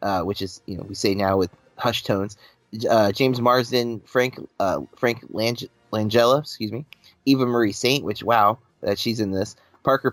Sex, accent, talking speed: male, American, 190 wpm